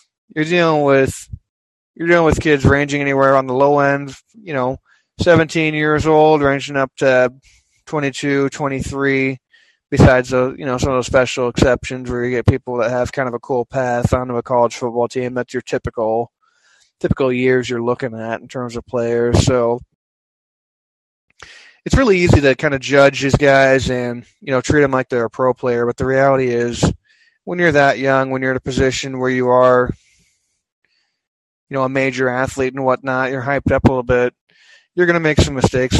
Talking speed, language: 190 wpm, English